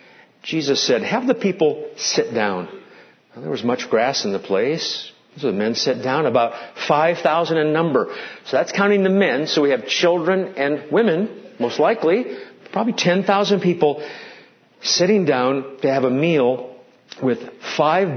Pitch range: 140-185 Hz